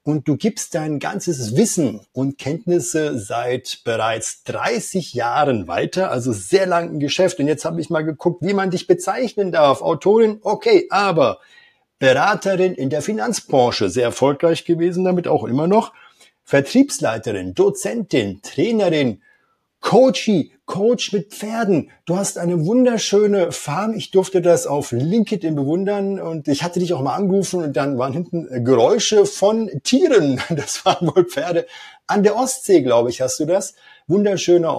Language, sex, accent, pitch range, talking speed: German, male, German, 145-200 Hz, 150 wpm